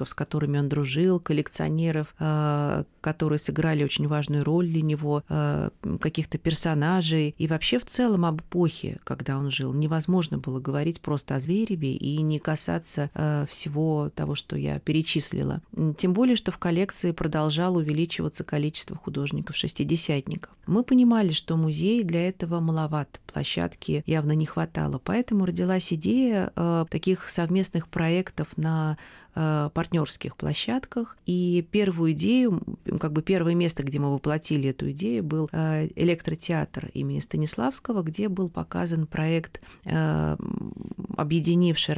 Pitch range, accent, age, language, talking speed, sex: 150-185 Hz, native, 30-49, Russian, 130 wpm, female